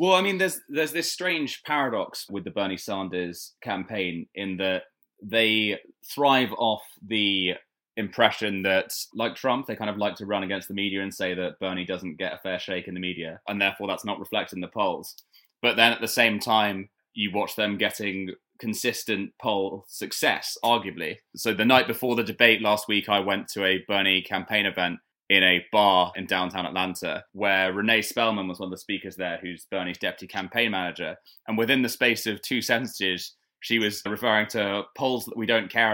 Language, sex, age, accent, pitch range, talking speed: English, male, 20-39, British, 95-115 Hz, 195 wpm